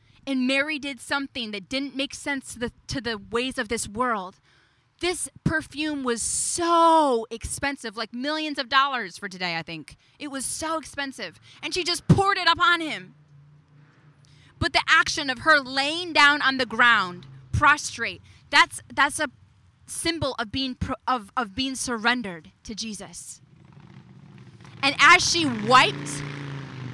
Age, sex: 20-39, female